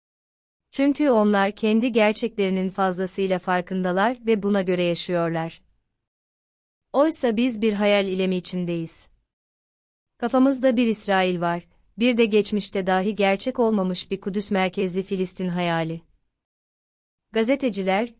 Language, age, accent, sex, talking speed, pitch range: Turkish, 30-49, native, female, 105 wpm, 185-220 Hz